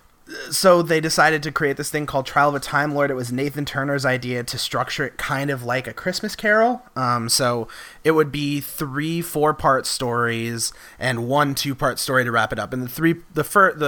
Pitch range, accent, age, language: 115-145 Hz, American, 30-49, English